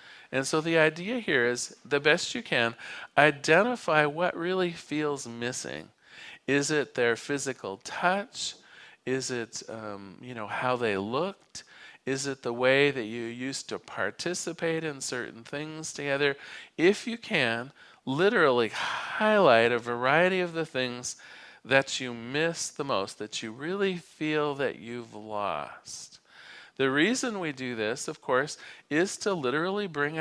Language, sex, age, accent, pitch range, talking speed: English, male, 40-59, American, 120-165 Hz, 145 wpm